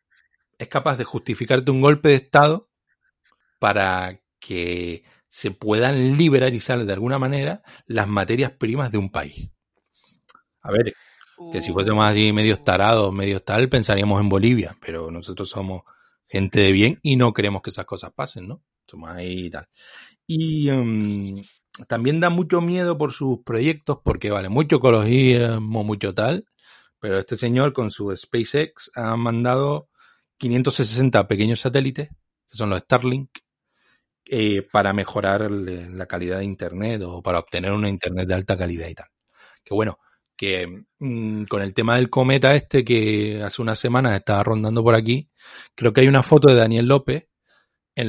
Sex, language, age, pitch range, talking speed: male, Spanish, 40-59, 95-130 Hz, 160 wpm